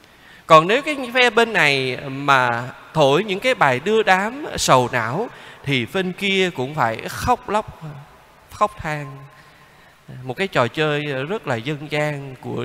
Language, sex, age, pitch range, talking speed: Vietnamese, male, 20-39, 130-185 Hz, 155 wpm